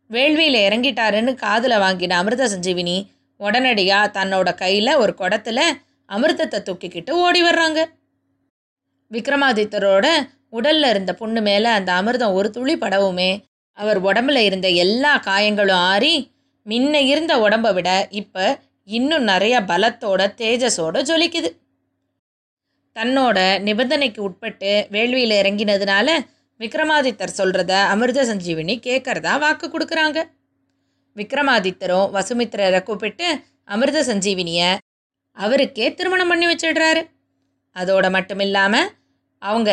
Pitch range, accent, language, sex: 190-285 Hz, native, Tamil, female